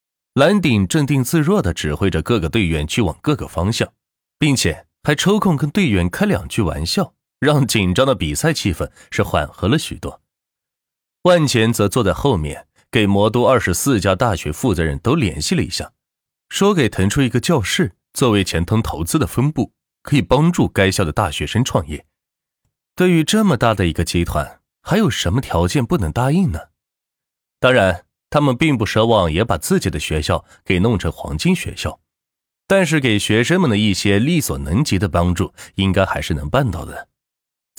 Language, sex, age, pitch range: Chinese, male, 30-49, 90-150 Hz